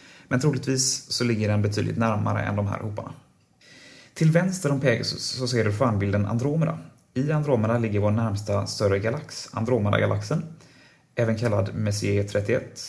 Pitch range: 105-130 Hz